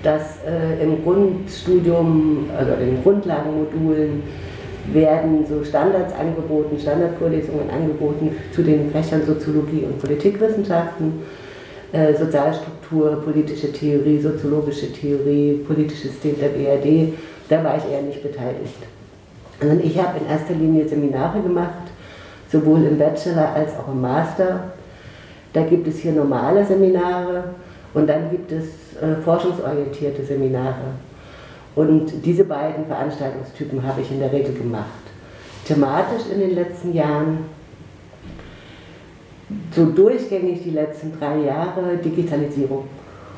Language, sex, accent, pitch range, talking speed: German, female, German, 140-165 Hz, 115 wpm